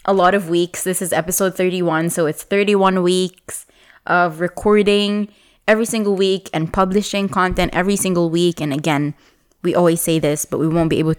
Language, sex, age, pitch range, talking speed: English, female, 20-39, 170-225 Hz, 180 wpm